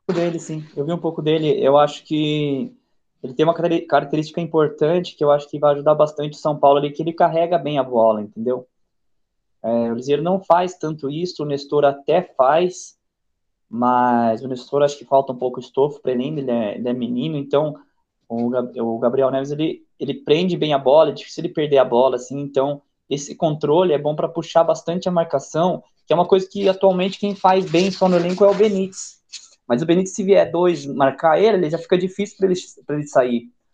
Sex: male